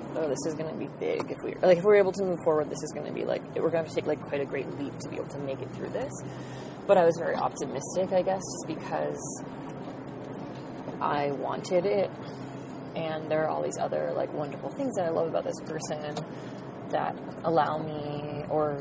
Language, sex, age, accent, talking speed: English, female, 20-39, American, 230 wpm